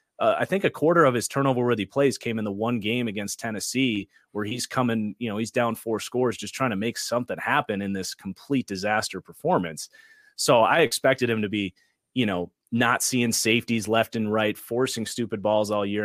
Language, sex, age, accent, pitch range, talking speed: English, male, 30-49, American, 105-130 Hz, 205 wpm